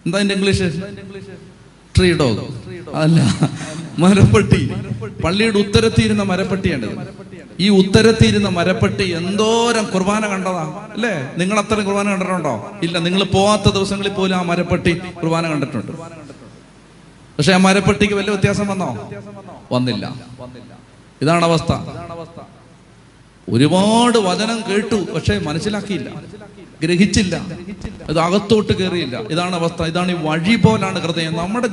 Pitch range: 165-210 Hz